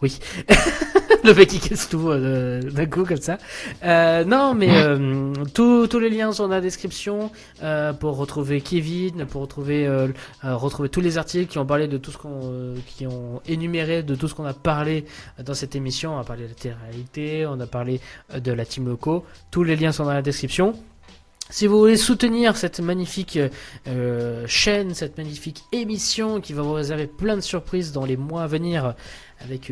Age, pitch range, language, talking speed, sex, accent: 20-39, 135-180 Hz, French, 195 wpm, male, French